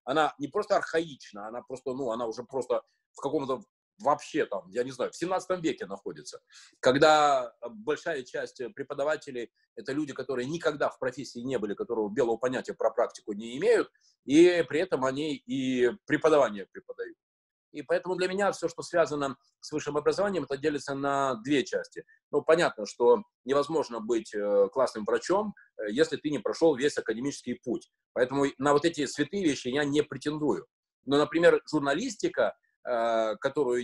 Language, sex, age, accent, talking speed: Russian, male, 20-39, native, 160 wpm